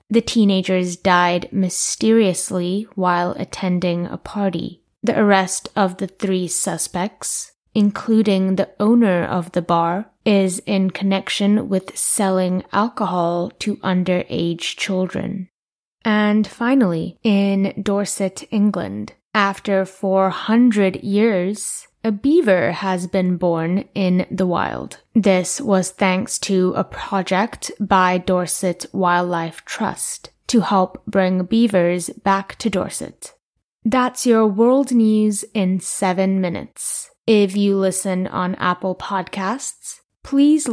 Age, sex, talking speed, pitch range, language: 20-39, female, 110 wpm, 185-215 Hz, English